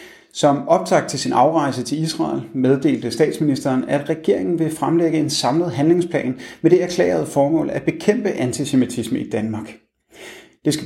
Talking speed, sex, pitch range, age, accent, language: 150 wpm, male, 125-165 Hz, 30-49, native, Danish